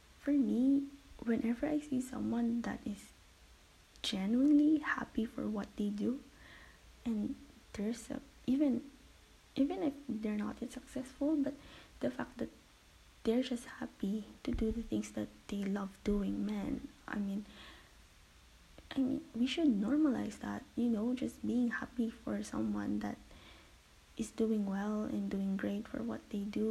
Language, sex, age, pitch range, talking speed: English, female, 20-39, 200-260 Hz, 145 wpm